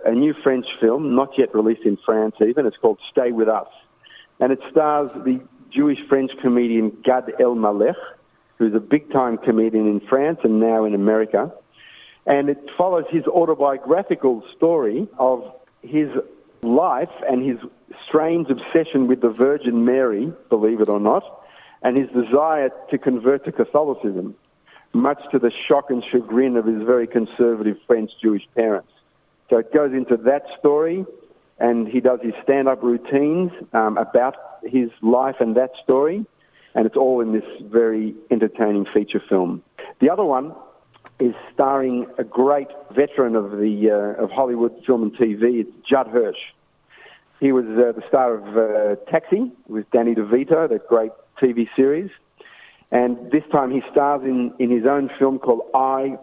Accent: Australian